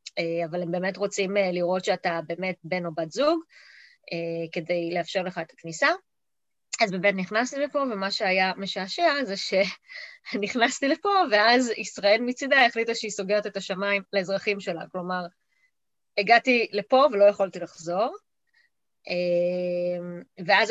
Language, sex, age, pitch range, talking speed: Hebrew, female, 20-39, 175-225 Hz, 125 wpm